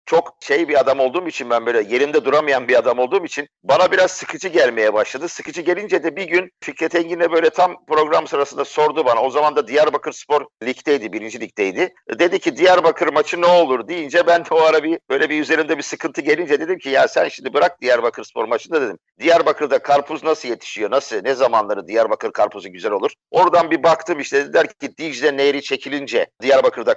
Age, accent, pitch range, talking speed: 50-69, native, 145-180 Hz, 200 wpm